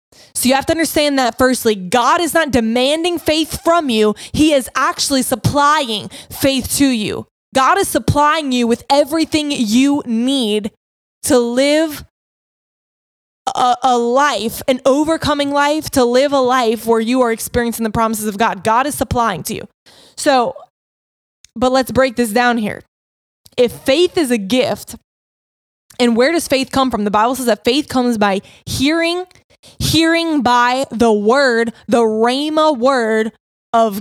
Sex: female